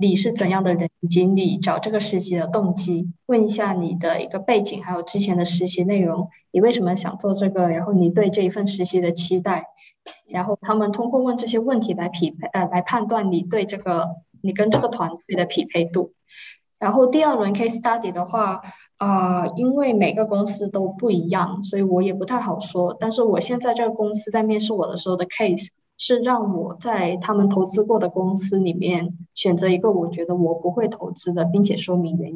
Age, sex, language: 20-39, female, Chinese